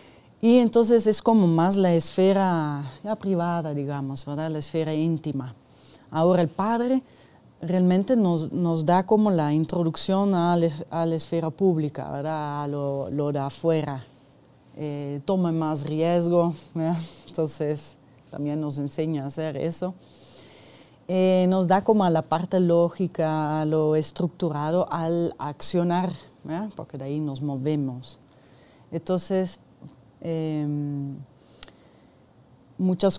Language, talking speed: Spanish, 125 wpm